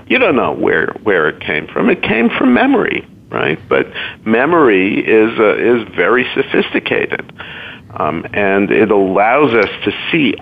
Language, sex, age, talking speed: English, male, 50-69, 155 wpm